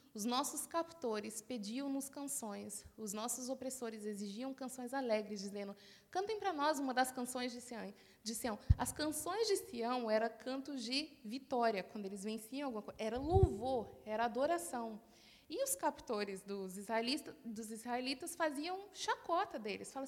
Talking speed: 145 wpm